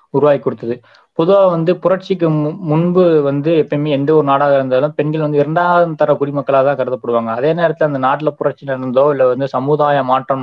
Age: 20-39